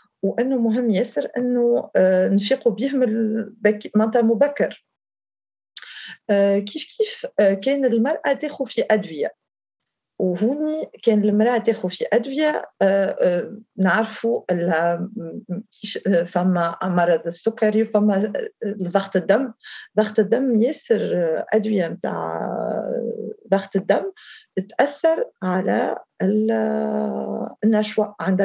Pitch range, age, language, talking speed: 185-240 Hz, 40-59, Arabic, 90 wpm